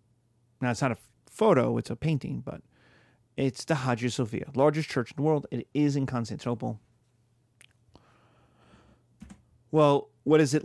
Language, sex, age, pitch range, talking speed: English, male, 30-49, 120-135 Hz, 145 wpm